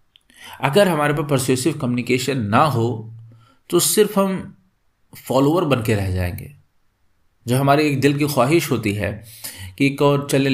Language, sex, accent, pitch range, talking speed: Hindi, male, native, 105-140 Hz, 150 wpm